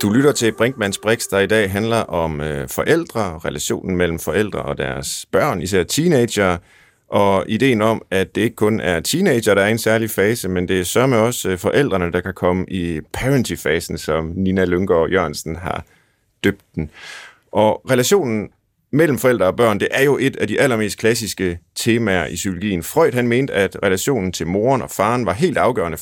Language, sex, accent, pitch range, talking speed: Danish, male, native, 90-110 Hz, 185 wpm